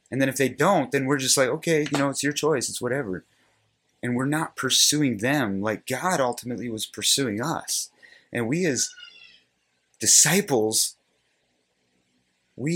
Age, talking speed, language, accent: 30-49, 155 wpm, English, American